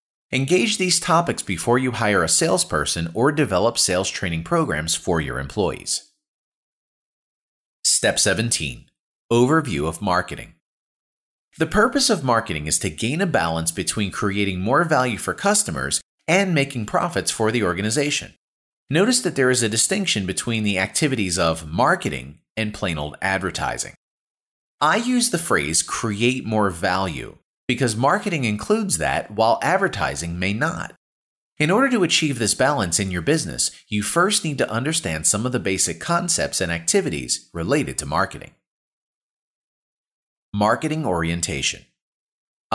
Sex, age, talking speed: male, 30-49, 140 wpm